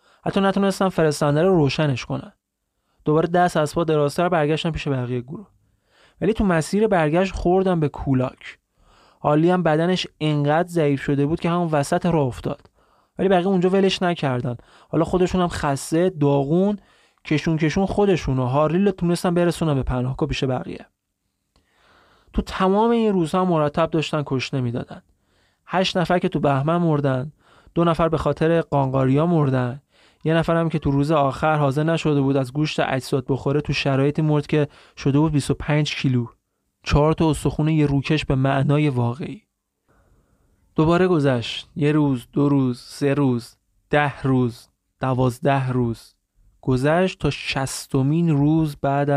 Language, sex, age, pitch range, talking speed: Persian, male, 30-49, 135-170 Hz, 145 wpm